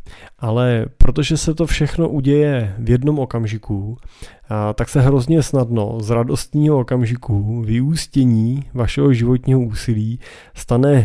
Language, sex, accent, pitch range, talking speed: Czech, male, native, 110-140 Hz, 115 wpm